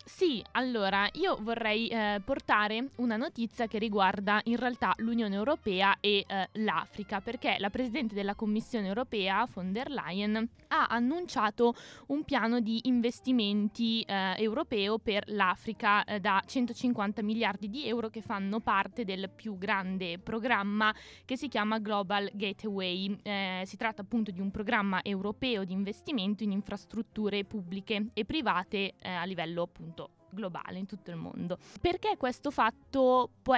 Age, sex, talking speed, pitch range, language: 20-39, female, 145 wpm, 195-230 Hz, Italian